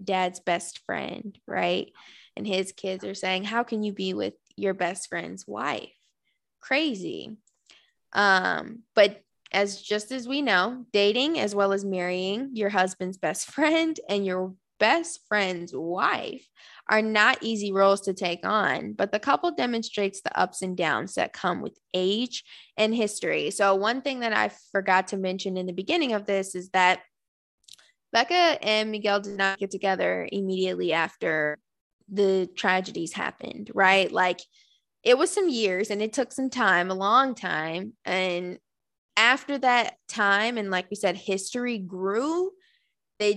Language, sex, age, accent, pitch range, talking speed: English, female, 10-29, American, 190-235 Hz, 155 wpm